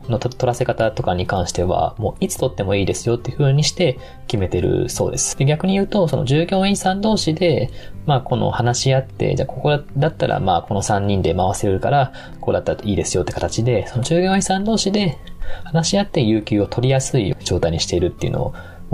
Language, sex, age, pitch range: Japanese, male, 20-39, 95-145 Hz